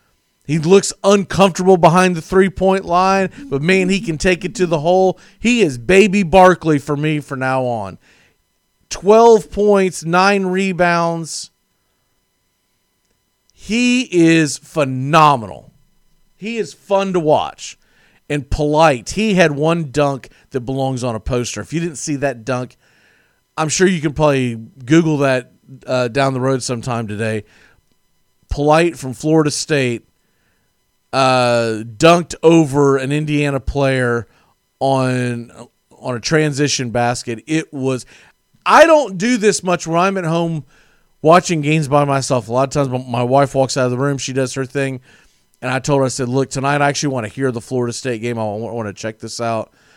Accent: American